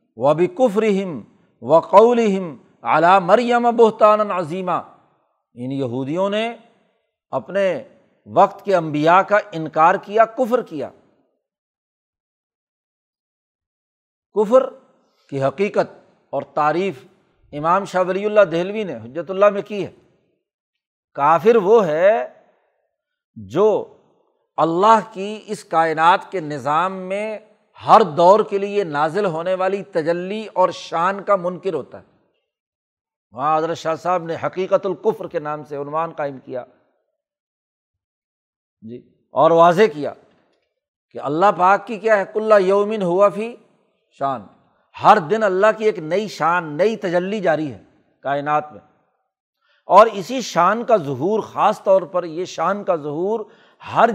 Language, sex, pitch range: Urdu, male, 165-215 Hz